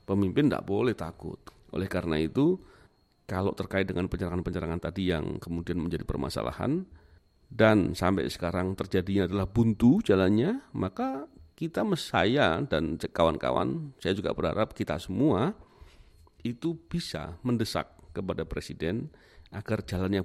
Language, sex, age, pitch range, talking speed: Indonesian, male, 40-59, 85-110 Hz, 120 wpm